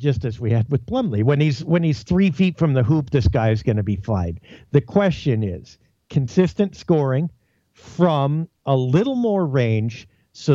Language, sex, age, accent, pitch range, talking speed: English, male, 50-69, American, 125-170 Hz, 190 wpm